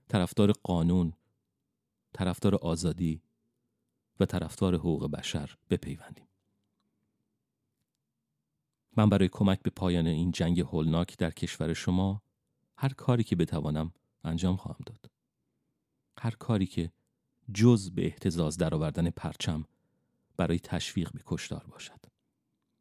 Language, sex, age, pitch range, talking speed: Persian, male, 40-59, 85-105 Hz, 110 wpm